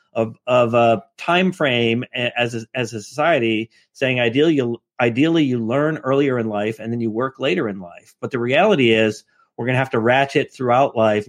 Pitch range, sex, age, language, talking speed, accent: 110-135 Hz, male, 40-59, English, 195 wpm, American